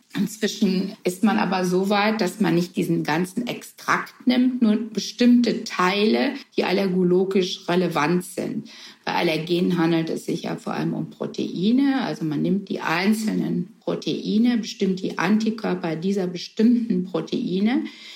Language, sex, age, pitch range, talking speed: German, female, 60-79, 170-215 Hz, 140 wpm